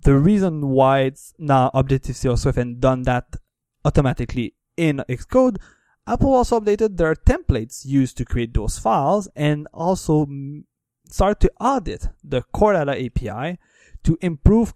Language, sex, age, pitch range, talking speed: English, male, 20-39, 125-165 Hz, 140 wpm